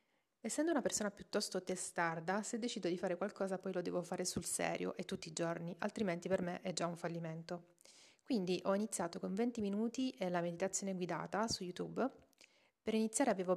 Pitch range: 180-210 Hz